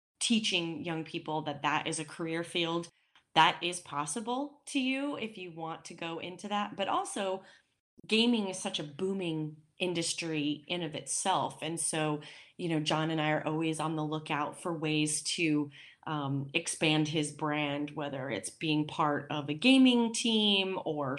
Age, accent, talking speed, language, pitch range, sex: 30-49, American, 170 wpm, English, 155-185 Hz, female